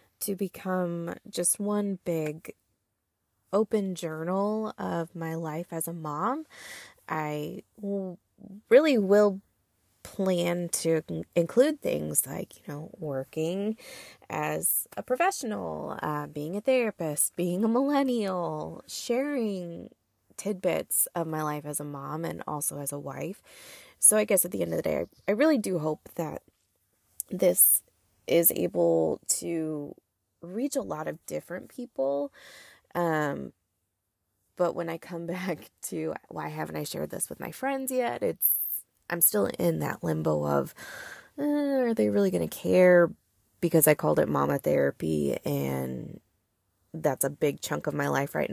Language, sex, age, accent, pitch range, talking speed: English, female, 20-39, American, 145-205 Hz, 145 wpm